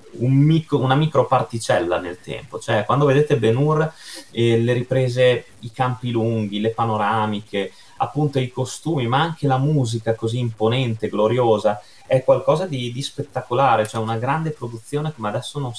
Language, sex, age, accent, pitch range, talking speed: Italian, male, 20-39, native, 105-130 Hz, 140 wpm